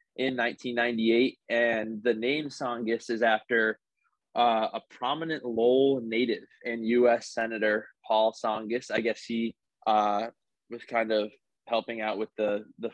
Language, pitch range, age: English, 110-125 Hz, 20-39